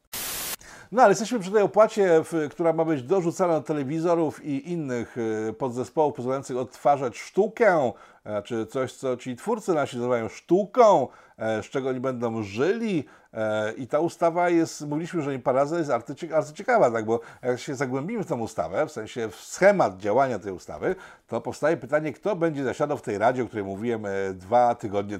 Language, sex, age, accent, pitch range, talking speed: Polish, male, 50-69, native, 110-150 Hz, 170 wpm